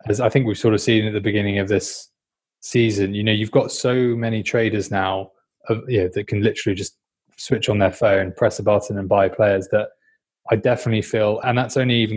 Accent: British